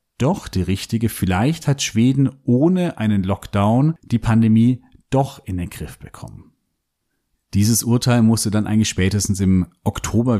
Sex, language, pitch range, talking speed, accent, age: male, German, 100-120 Hz, 140 wpm, German, 40-59